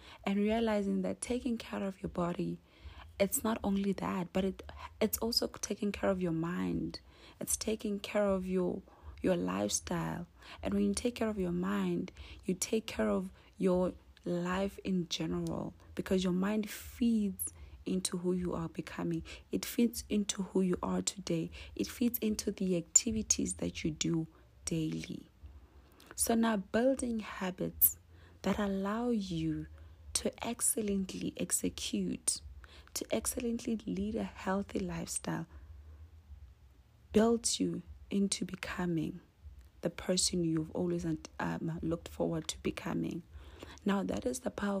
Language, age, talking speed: English, 30-49, 140 wpm